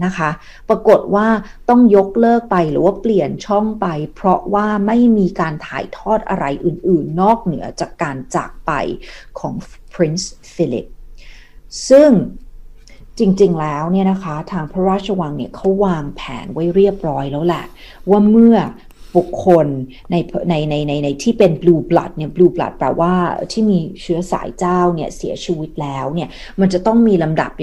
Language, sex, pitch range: Thai, female, 160-195 Hz